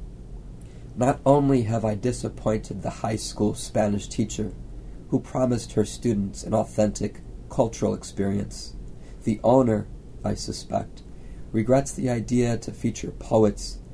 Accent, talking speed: American, 120 wpm